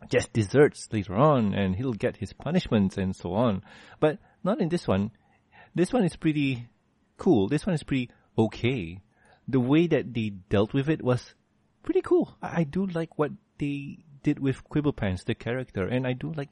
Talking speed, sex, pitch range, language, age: 190 wpm, male, 105-135 Hz, English, 30-49